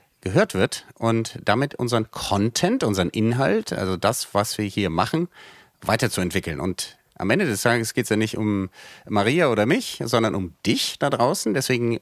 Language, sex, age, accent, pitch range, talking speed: German, male, 40-59, German, 110-145 Hz, 170 wpm